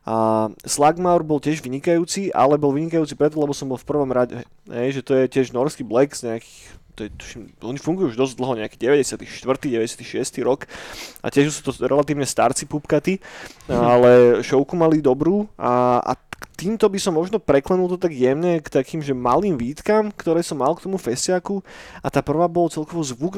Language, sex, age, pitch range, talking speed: Slovak, male, 20-39, 130-170 Hz, 175 wpm